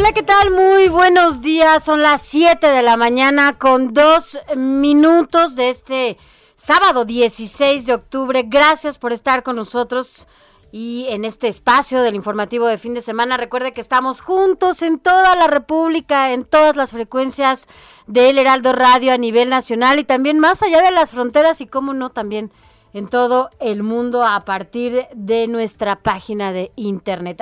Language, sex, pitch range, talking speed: Spanish, female, 220-285 Hz, 165 wpm